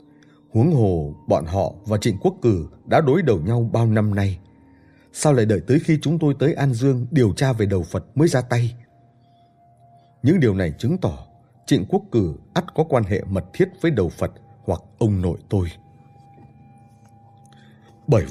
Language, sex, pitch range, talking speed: Vietnamese, male, 95-135 Hz, 180 wpm